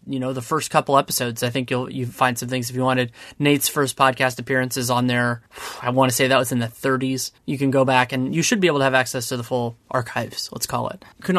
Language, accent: English, American